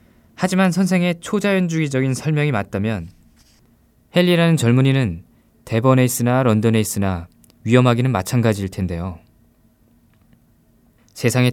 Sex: male